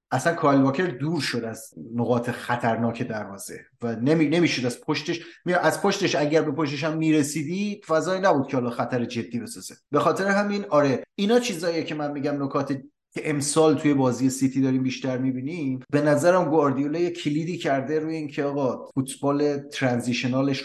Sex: male